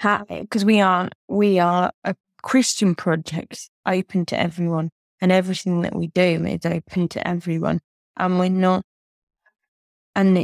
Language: English